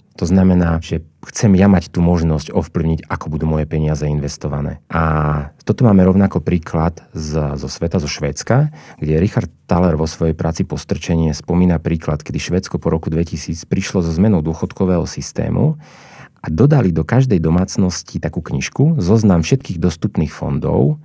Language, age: Slovak, 40-59